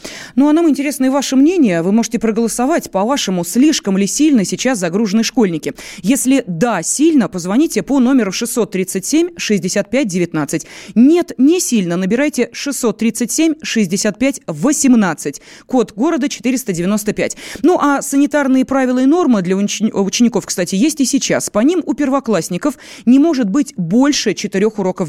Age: 20-39